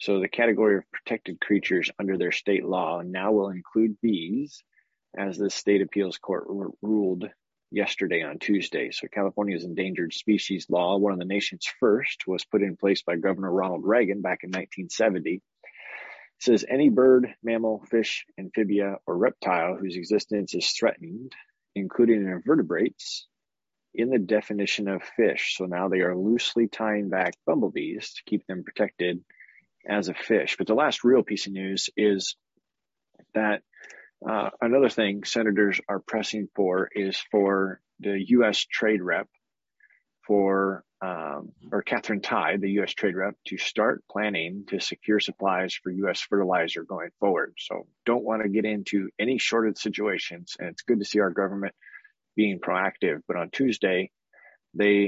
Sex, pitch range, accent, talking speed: male, 95-105 Hz, American, 155 wpm